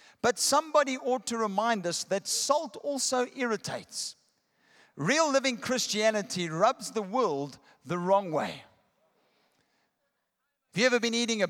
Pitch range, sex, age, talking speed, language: 190-255 Hz, male, 50-69, 130 wpm, English